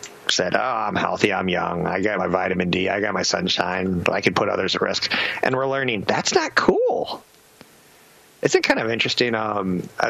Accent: American